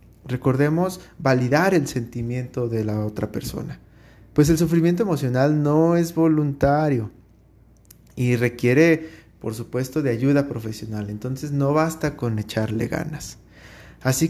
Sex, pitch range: male, 115-155 Hz